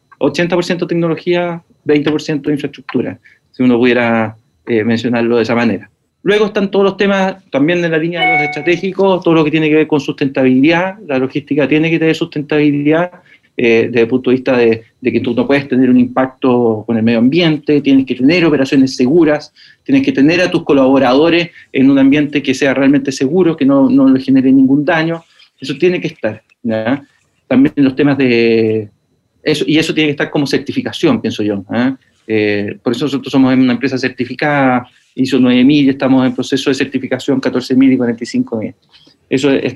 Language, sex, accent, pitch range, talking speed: English, male, Argentinian, 130-180 Hz, 185 wpm